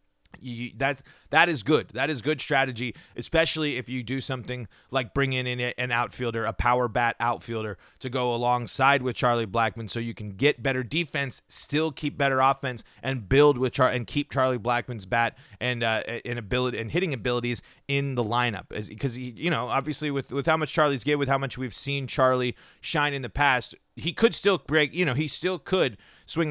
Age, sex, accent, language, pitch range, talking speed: 30-49, male, American, English, 115-140 Hz, 200 wpm